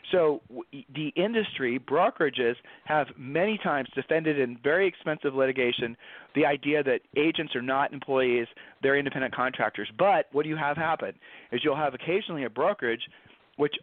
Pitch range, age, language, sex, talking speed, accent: 135-170 Hz, 40-59, English, male, 150 wpm, American